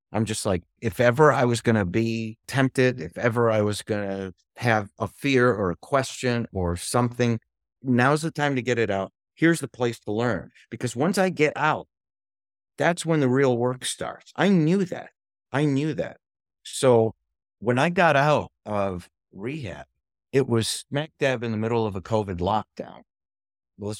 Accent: American